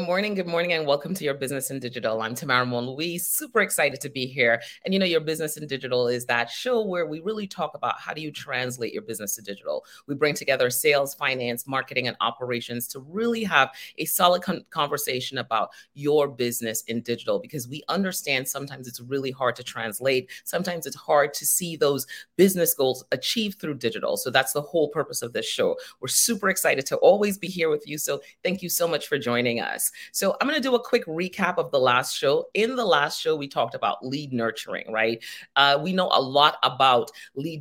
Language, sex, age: English, female, 30-49